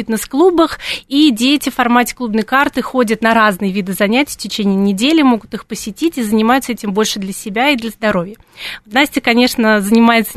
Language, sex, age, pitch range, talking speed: Russian, female, 20-39, 215-255 Hz, 175 wpm